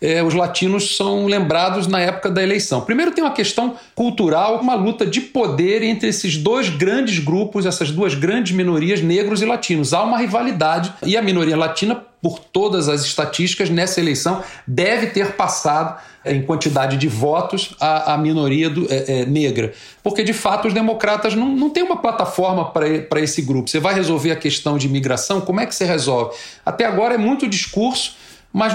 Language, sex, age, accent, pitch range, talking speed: Portuguese, male, 40-59, Brazilian, 155-205 Hz, 185 wpm